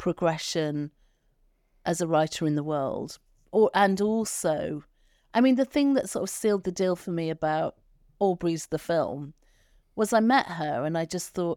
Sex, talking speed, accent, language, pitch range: female, 175 wpm, British, English, 160-215 Hz